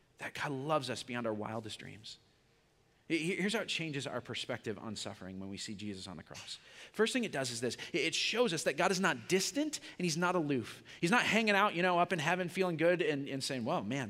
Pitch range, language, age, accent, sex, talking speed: 135-200 Hz, English, 30-49, American, male, 245 wpm